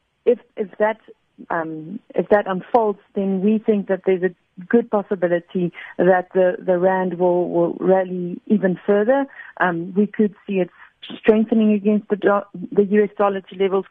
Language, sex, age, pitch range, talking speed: English, female, 40-59, 170-200 Hz, 145 wpm